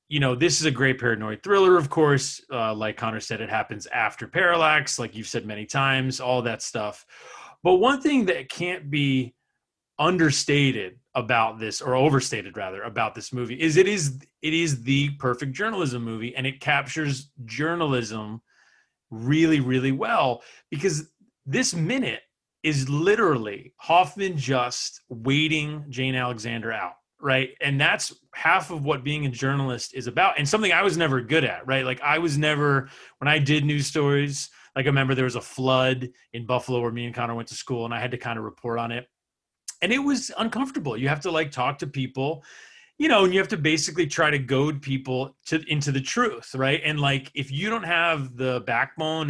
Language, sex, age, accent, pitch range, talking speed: English, male, 30-49, American, 125-160 Hz, 185 wpm